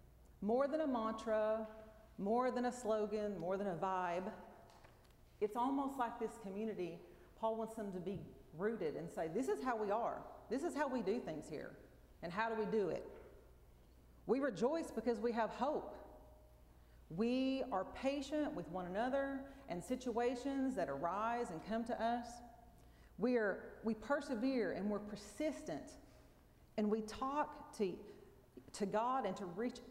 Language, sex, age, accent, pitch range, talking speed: English, female, 40-59, American, 175-245 Hz, 155 wpm